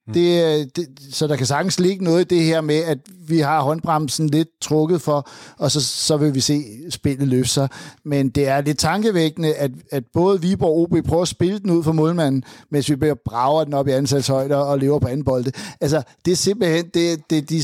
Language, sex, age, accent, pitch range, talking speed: Danish, male, 60-79, native, 140-165 Hz, 230 wpm